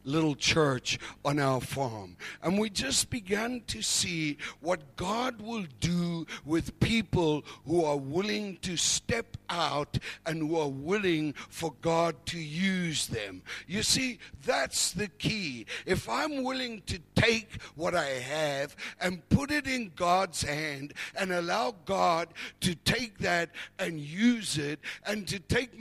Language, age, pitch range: English, 60-79, 160-215 Hz